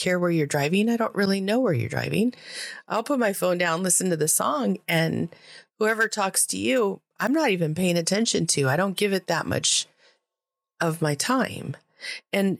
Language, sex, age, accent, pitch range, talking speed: English, female, 30-49, American, 160-200 Hz, 195 wpm